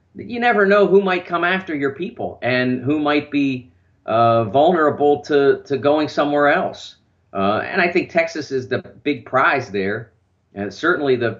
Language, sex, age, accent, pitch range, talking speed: English, male, 40-59, American, 100-130 Hz, 175 wpm